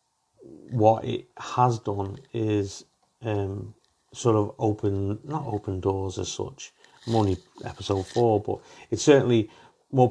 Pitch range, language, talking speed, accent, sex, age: 100-110 Hz, English, 125 wpm, British, male, 40-59